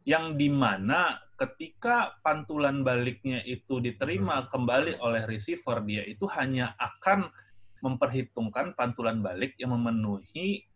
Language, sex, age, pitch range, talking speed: English, male, 20-39, 115-150 Hz, 105 wpm